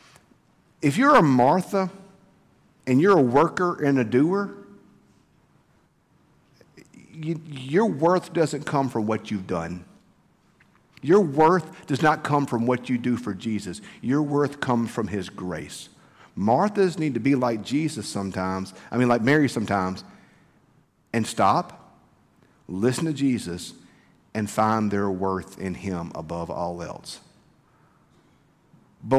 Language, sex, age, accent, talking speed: English, male, 50-69, American, 130 wpm